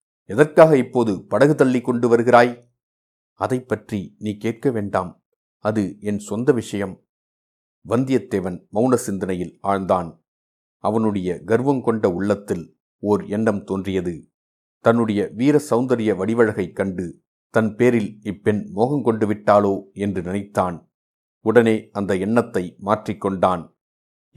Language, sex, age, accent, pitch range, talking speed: Tamil, male, 50-69, native, 100-125 Hz, 100 wpm